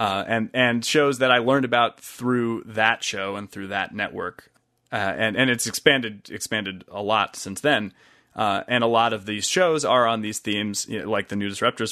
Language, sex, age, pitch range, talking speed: English, male, 30-49, 100-125 Hz, 210 wpm